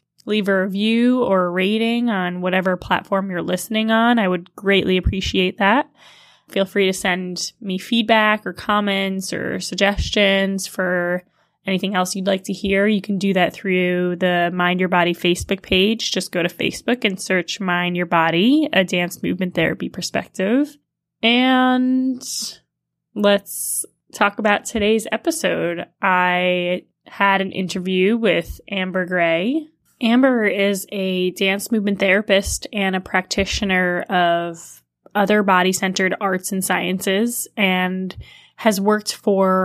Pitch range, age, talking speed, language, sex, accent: 180-210 Hz, 10-29, 140 wpm, English, female, American